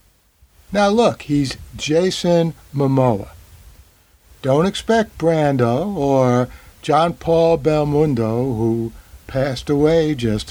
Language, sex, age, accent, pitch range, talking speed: English, male, 60-79, American, 100-155 Hz, 90 wpm